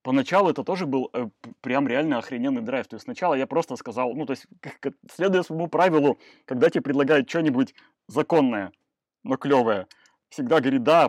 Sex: male